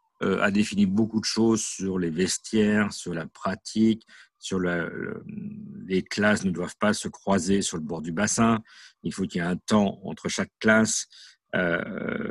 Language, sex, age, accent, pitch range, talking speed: French, male, 50-69, French, 95-150 Hz, 180 wpm